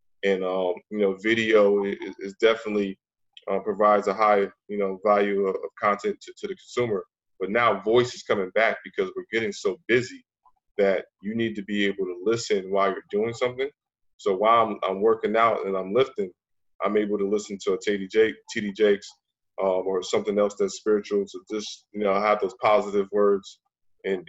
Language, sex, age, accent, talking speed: English, male, 20-39, American, 195 wpm